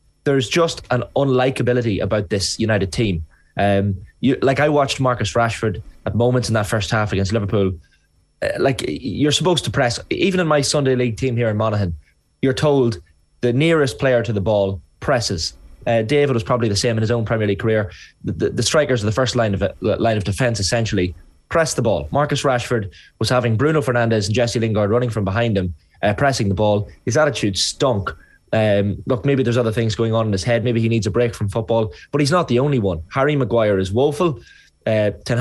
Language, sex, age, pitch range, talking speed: English, male, 20-39, 105-130 Hz, 215 wpm